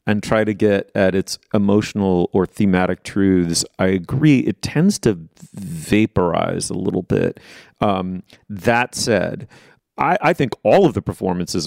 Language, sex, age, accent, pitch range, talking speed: English, male, 30-49, American, 90-110 Hz, 150 wpm